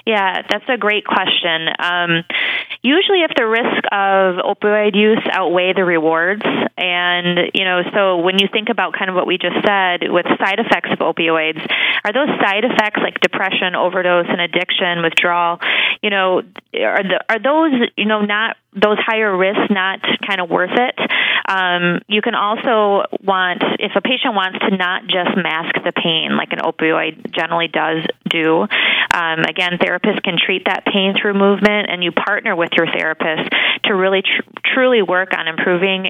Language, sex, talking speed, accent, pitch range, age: English, female, 175 wpm, American, 175-210 Hz, 20-39